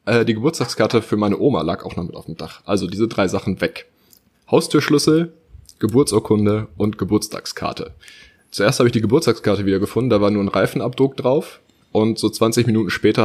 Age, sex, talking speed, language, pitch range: 20-39, male, 175 wpm, German, 100-120 Hz